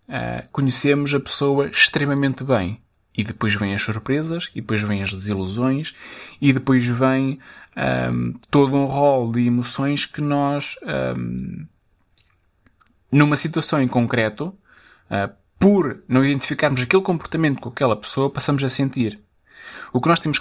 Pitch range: 115-155 Hz